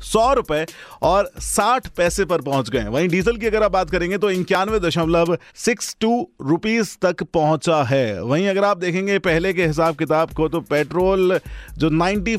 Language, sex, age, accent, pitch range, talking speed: Hindi, male, 30-49, native, 125-170 Hz, 180 wpm